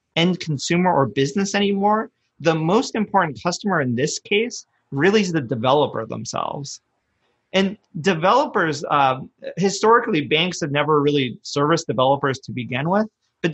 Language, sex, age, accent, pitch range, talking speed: English, male, 30-49, American, 135-185 Hz, 135 wpm